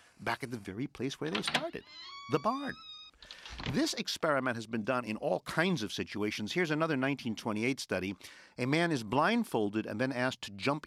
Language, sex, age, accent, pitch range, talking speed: English, male, 50-69, American, 105-170 Hz, 180 wpm